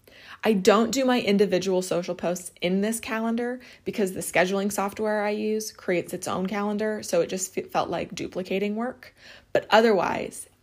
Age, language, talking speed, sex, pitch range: 20-39, English, 165 wpm, female, 180-215 Hz